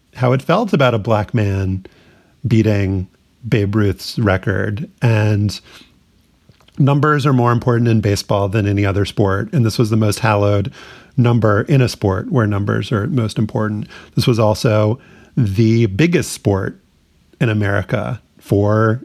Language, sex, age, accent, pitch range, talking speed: English, male, 40-59, American, 100-125 Hz, 145 wpm